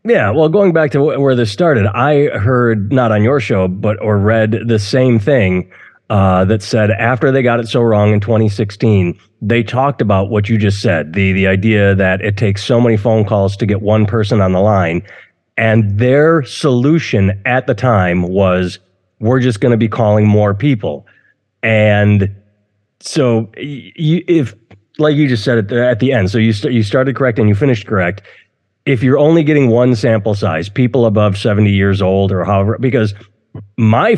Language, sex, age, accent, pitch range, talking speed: English, male, 30-49, American, 105-130 Hz, 190 wpm